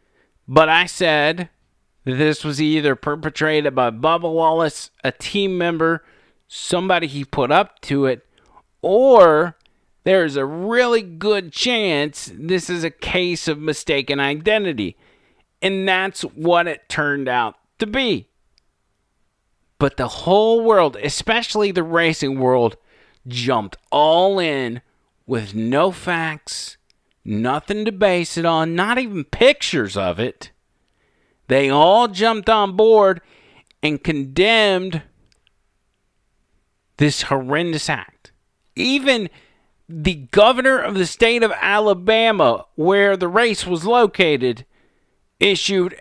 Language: English